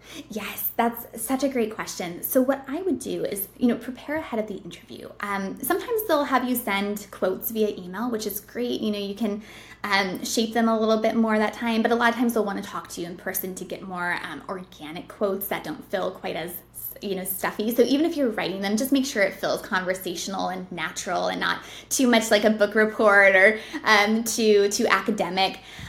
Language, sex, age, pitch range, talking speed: English, female, 20-39, 195-245 Hz, 225 wpm